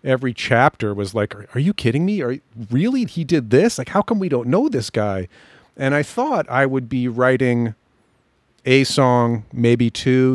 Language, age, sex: English, 40-59, male